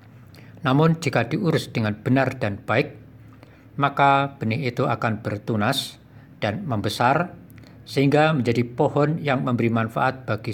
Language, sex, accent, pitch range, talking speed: Indonesian, male, native, 115-140 Hz, 120 wpm